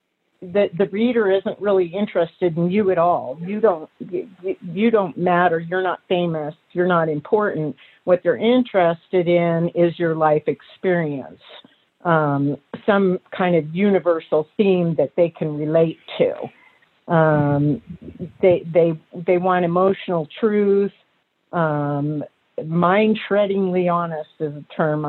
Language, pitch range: English, 165-195 Hz